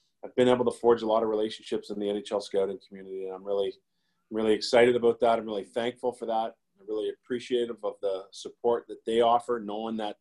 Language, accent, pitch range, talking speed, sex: English, American, 110-125 Hz, 215 wpm, male